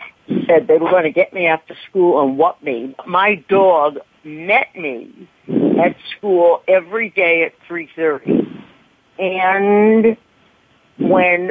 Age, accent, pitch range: 60-79, American, 160-200 Hz